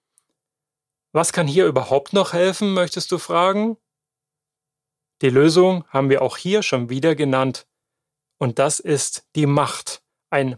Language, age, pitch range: German, 30-49, 135-160 Hz